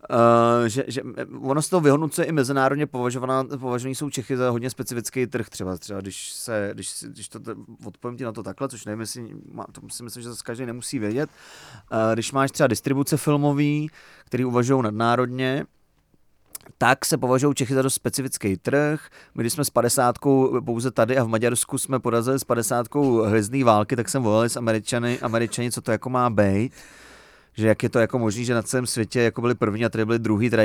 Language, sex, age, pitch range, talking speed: Czech, male, 30-49, 115-135 Hz, 200 wpm